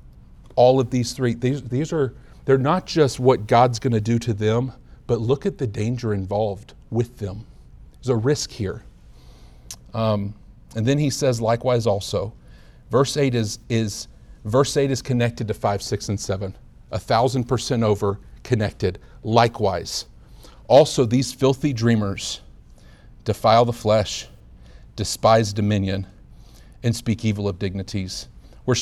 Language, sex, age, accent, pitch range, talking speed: English, male, 40-59, American, 110-135 Hz, 145 wpm